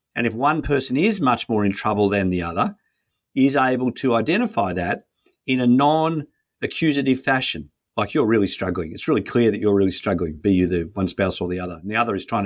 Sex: male